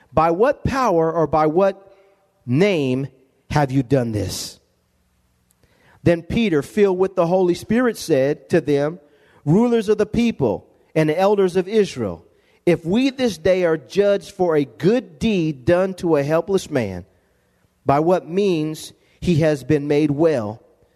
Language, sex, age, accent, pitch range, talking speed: English, male, 40-59, American, 140-195 Hz, 150 wpm